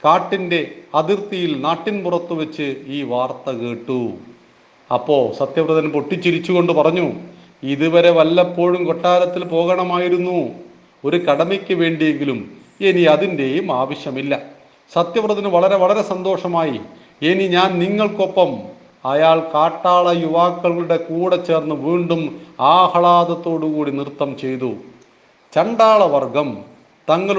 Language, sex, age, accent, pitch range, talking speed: Hindi, male, 40-59, native, 150-180 Hz, 50 wpm